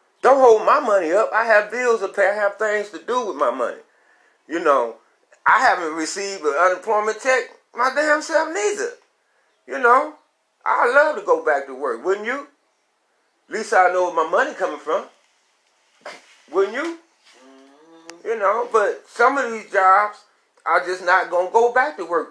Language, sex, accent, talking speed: English, male, American, 185 wpm